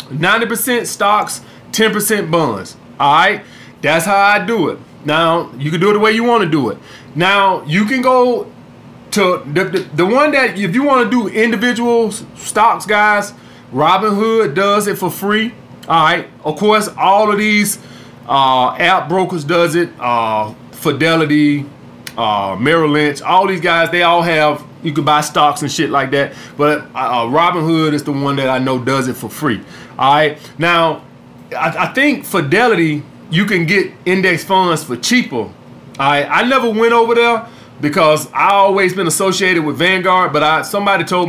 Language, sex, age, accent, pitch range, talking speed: English, male, 30-49, American, 150-200 Hz, 175 wpm